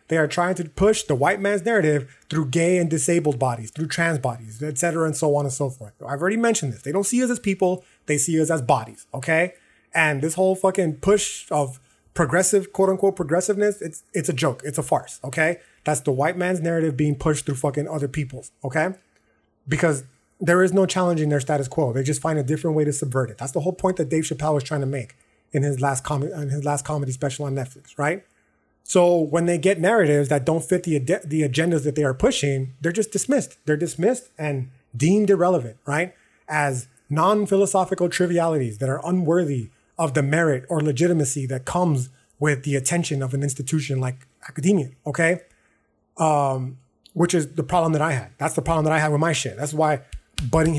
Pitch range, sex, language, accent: 140-175 Hz, male, English, American